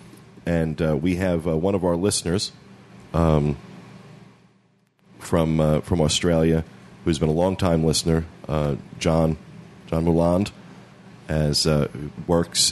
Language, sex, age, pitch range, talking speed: English, male, 30-49, 80-95 Hz, 125 wpm